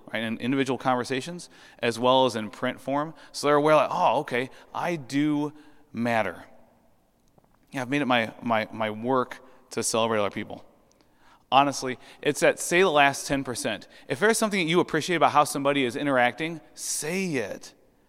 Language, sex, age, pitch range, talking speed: English, male, 30-49, 115-150 Hz, 165 wpm